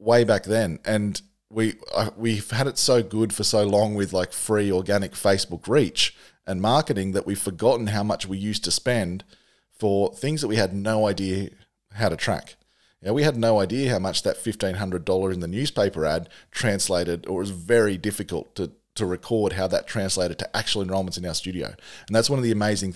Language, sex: English, male